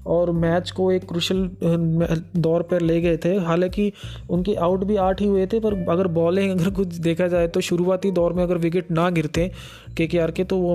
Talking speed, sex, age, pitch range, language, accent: 205 wpm, male, 20-39, 165-185 Hz, Hindi, native